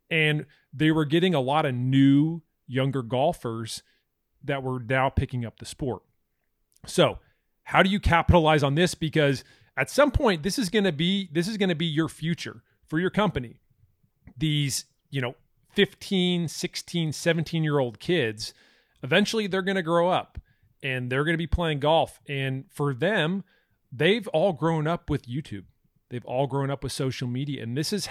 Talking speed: 165 wpm